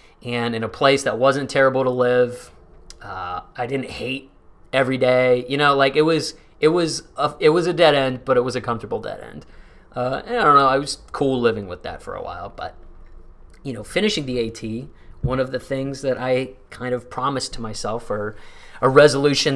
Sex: male